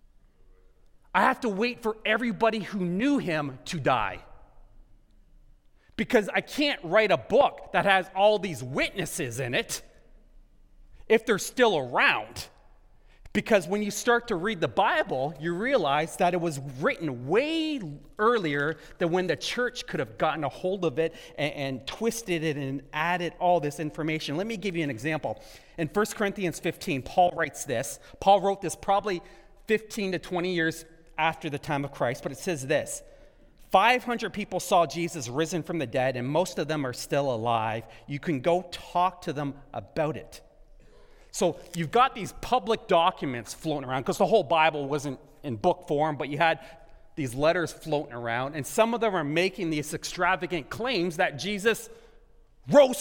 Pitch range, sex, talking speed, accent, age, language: 155-210 Hz, male, 170 wpm, American, 30-49, English